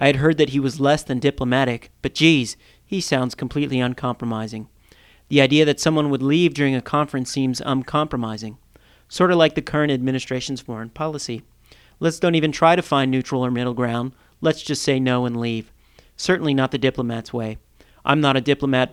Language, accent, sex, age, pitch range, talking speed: English, American, male, 40-59, 125-150 Hz, 185 wpm